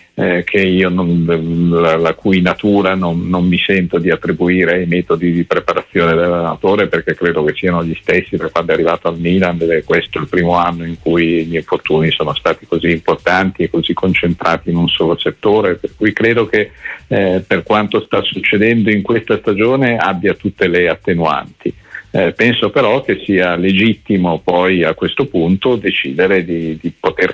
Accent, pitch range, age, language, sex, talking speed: native, 85-100 Hz, 50-69, Italian, male, 180 wpm